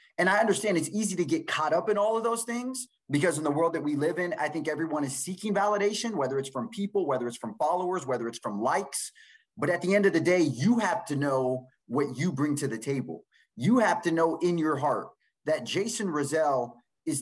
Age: 30-49